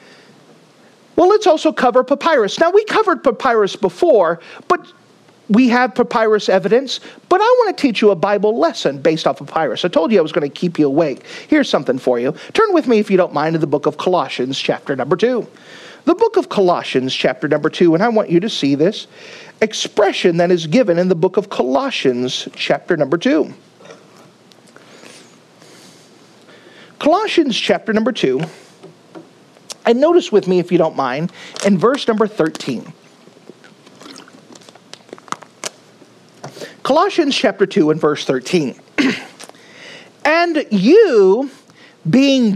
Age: 40-59